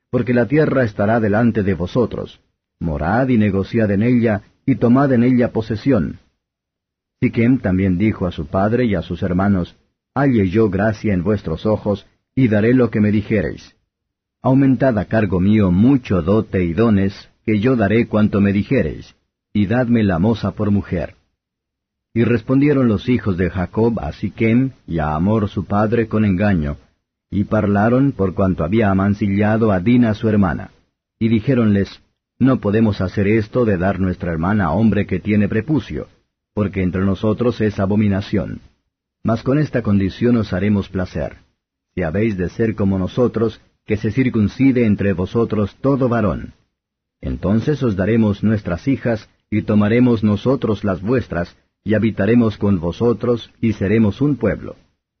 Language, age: Spanish, 50-69